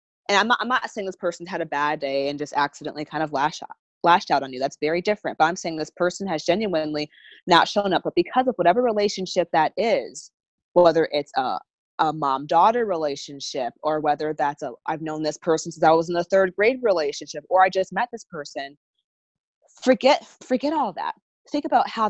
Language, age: English, 20-39